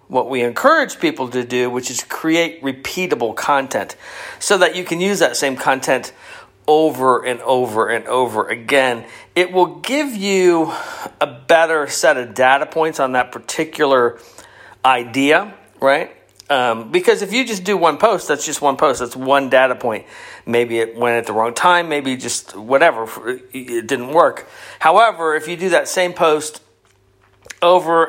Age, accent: 40-59, American